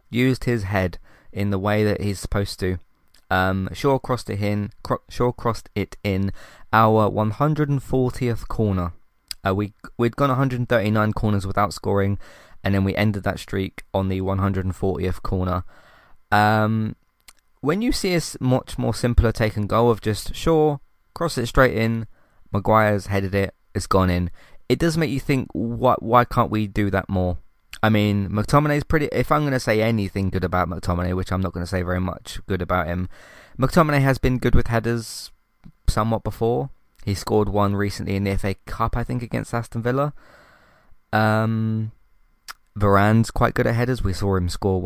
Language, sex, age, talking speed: English, male, 20-39, 180 wpm